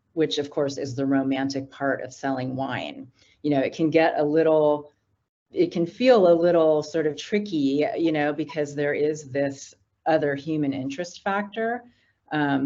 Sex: female